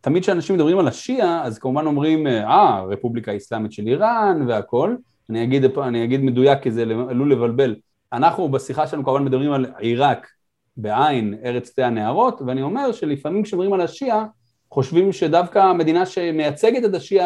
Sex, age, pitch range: male, 30-49, 120-165 Hz